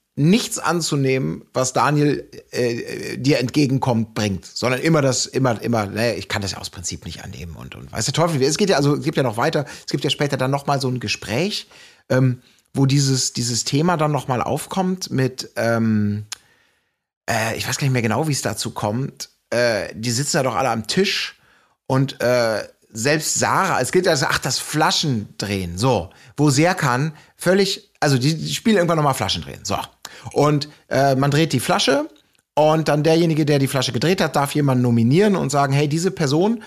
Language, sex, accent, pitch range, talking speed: German, male, German, 115-155 Hz, 200 wpm